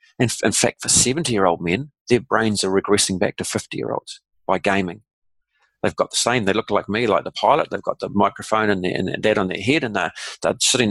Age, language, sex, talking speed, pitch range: 40-59, English, male, 215 wpm, 95-115 Hz